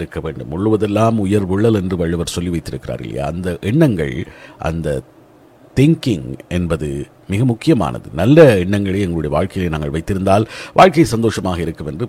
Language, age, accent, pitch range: Tamil, 50-69, native, 85-115 Hz